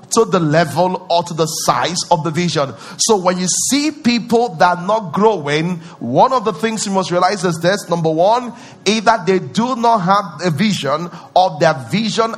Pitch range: 170-205 Hz